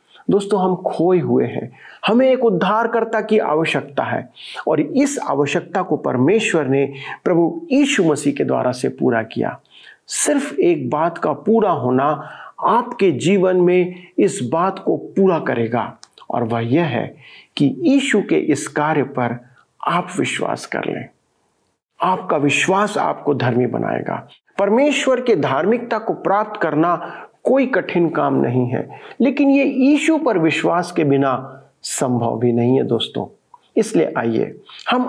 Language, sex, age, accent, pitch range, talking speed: Hindi, male, 40-59, native, 140-220 Hz, 145 wpm